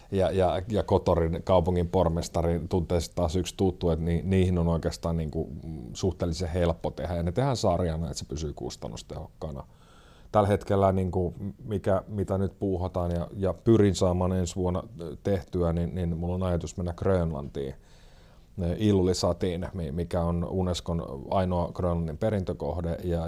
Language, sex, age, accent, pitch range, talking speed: Finnish, male, 30-49, native, 85-95 Hz, 145 wpm